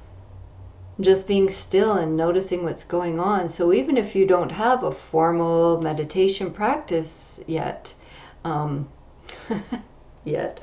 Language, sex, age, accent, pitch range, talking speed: English, female, 40-59, American, 170-215 Hz, 120 wpm